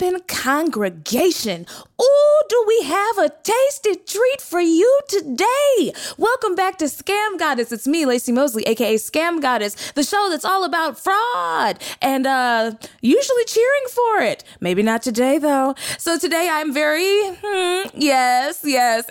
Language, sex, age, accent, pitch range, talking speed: English, female, 20-39, American, 235-365 Hz, 145 wpm